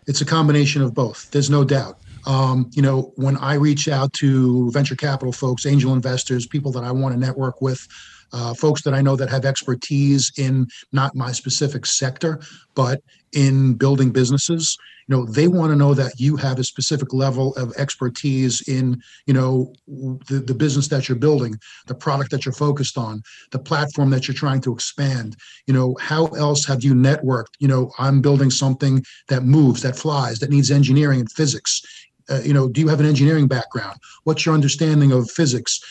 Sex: male